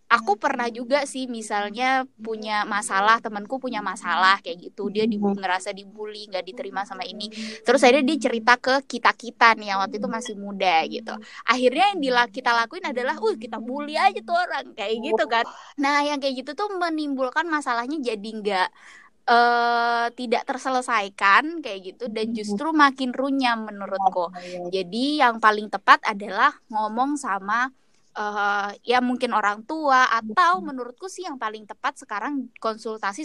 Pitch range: 210-275 Hz